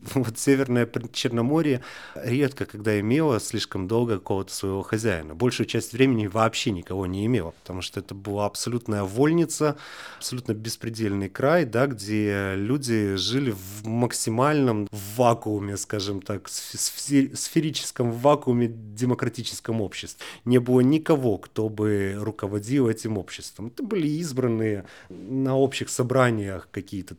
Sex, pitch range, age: male, 105-135 Hz, 30-49